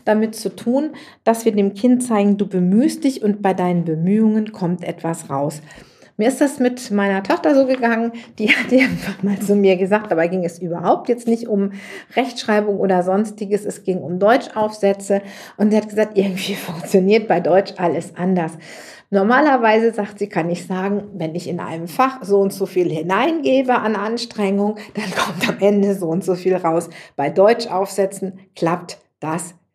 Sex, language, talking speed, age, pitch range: female, German, 180 wpm, 50-69, 185-225 Hz